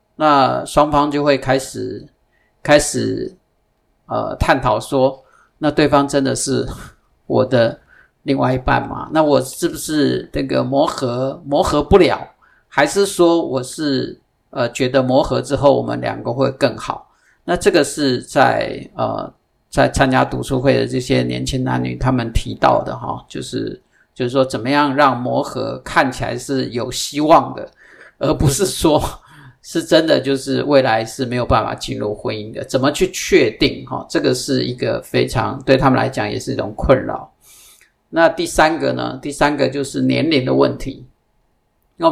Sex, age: male, 50-69